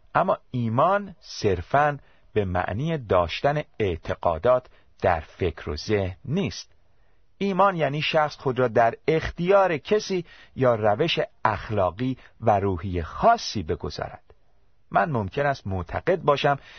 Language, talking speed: Persian, 115 wpm